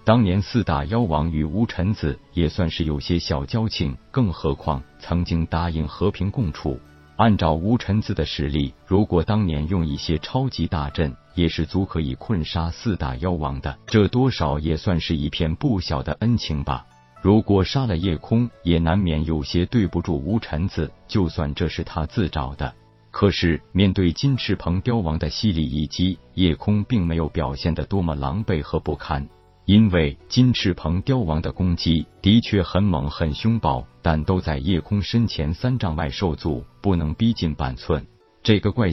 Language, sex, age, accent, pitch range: Chinese, male, 50-69, native, 75-105 Hz